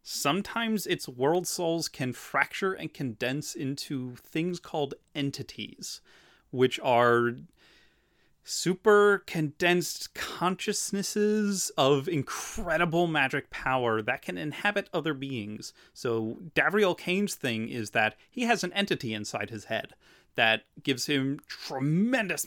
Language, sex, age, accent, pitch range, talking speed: English, male, 30-49, American, 110-160 Hz, 115 wpm